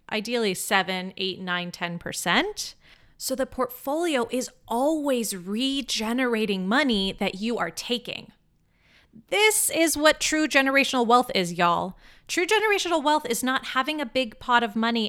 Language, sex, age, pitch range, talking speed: English, female, 30-49, 195-260 Hz, 145 wpm